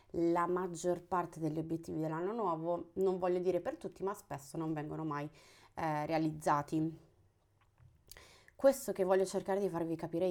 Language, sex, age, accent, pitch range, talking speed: Italian, female, 20-39, native, 165-190 Hz, 150 wpm